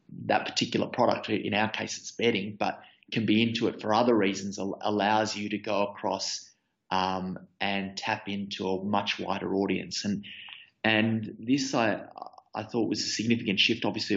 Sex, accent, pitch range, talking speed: male, Australian, 100-115 Hz, 170 wpm